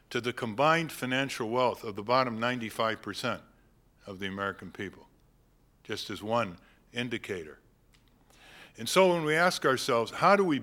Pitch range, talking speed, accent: 120-160 Hz, 145 wpm, American